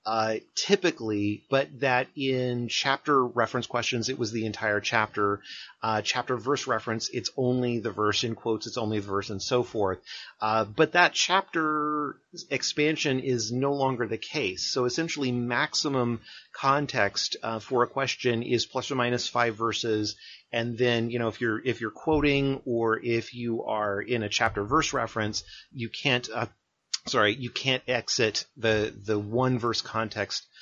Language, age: English, 30-49